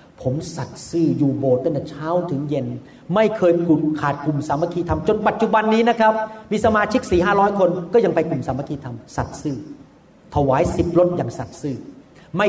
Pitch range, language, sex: 135-175 Hz, Thai, male